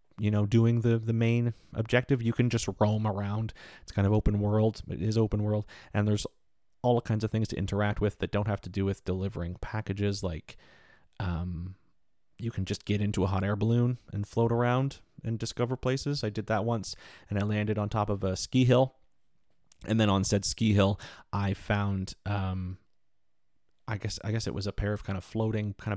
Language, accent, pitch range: English, American, 95-110 Hz